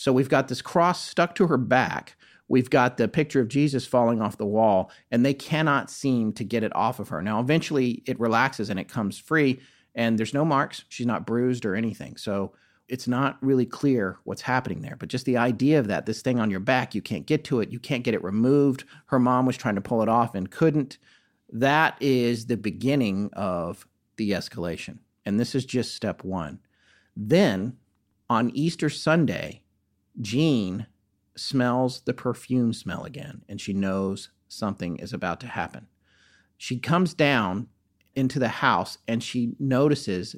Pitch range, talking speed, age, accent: 110-140 Hz, 185 wpm, 40-59, American